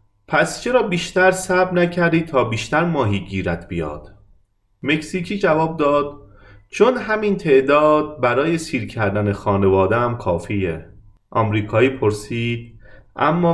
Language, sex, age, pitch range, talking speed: Persian, male, 30-49, 100-150 Hz, 105 wpm